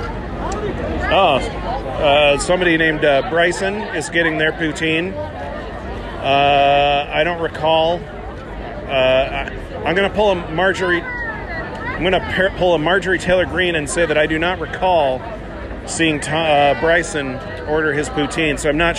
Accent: American